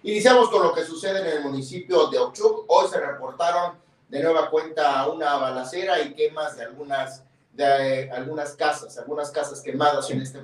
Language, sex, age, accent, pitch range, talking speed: Spanish, male, 40-59, Mexican, 145-230 Hz, 185 wpm